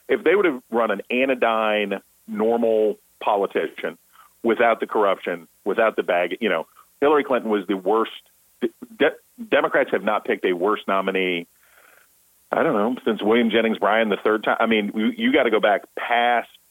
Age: 40-59